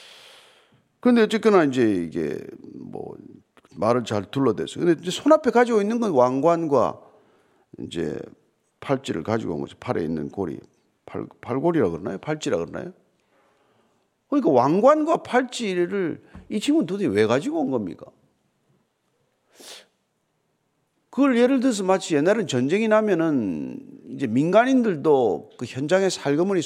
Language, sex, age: Korean, male, 50-69